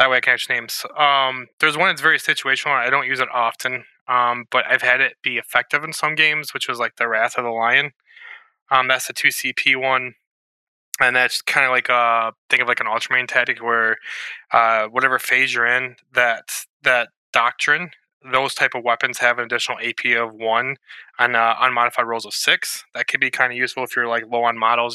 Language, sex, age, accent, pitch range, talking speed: English, male, 20-39, American, 115-130 Hz, 215 wpm